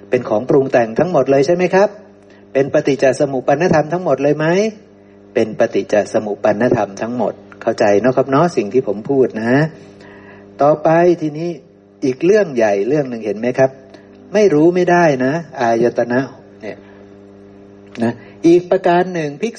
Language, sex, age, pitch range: Thai, male, 60-79, 100-165 Hz